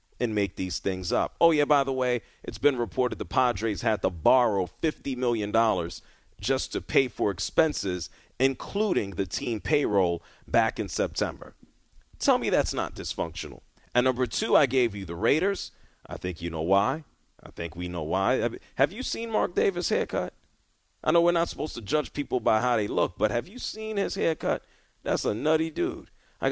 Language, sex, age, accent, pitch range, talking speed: English, male, 40-59, American, 95-140 Hz, 190 wpm